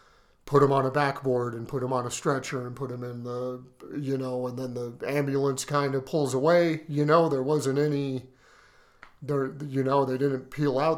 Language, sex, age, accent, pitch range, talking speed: English, male, 40-59, American, 130-145 Hz, 210 wpm